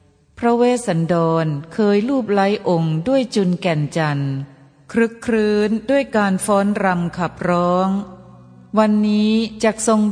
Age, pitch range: 30-49, 160-220 Hz